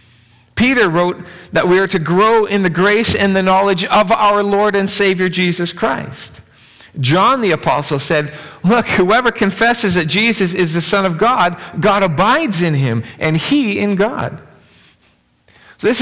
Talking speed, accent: 160 wpm, American